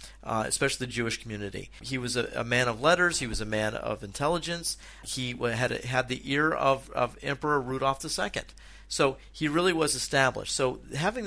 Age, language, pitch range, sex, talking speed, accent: 50-69, English, 115-155 Hz, male, 185 wpm, American